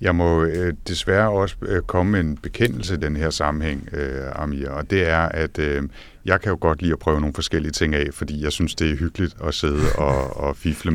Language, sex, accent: Danish, male, native